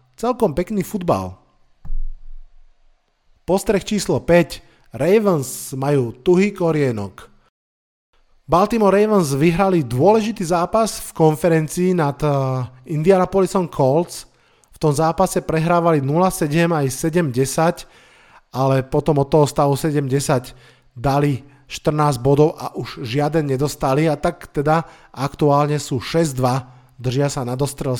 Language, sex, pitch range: Slovak, male, 135-170 Hz